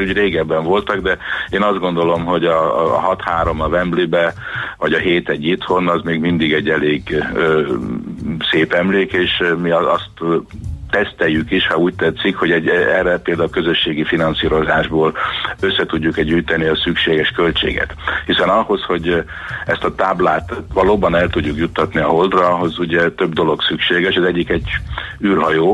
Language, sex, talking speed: Hungarian, male, 160 wpm